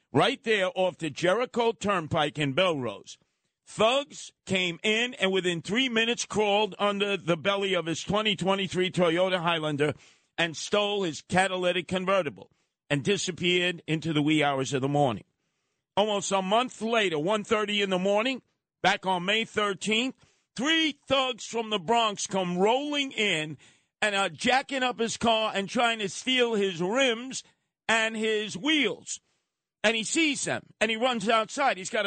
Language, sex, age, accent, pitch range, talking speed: English, male, 50-69, American, 180-235 Hz, 155 wpm